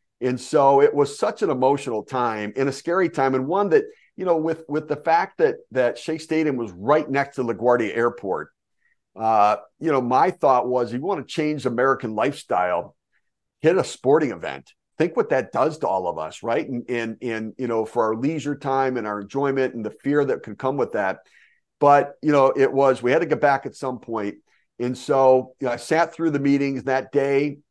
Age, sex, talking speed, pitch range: 50-69, male, 220 wpm, 120-140 Hz